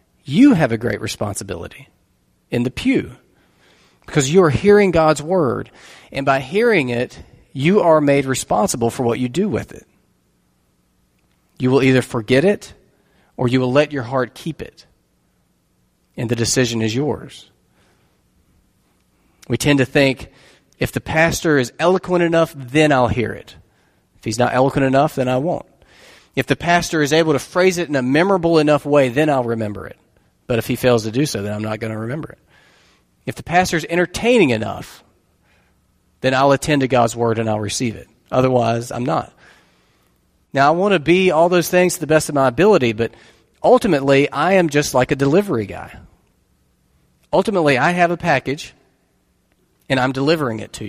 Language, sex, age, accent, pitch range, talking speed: English, male, 40-59, American, 115-160 Hz, 175 wpm